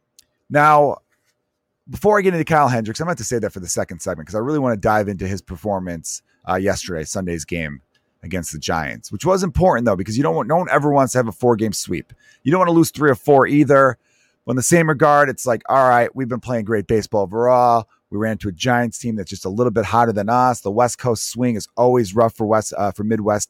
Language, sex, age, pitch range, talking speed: English, male, 30-49, 110-145 Hz, 255 wpm